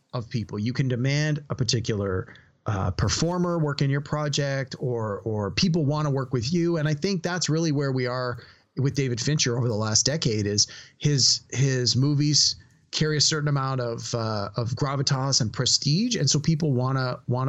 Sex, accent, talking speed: male, American, 190 wpm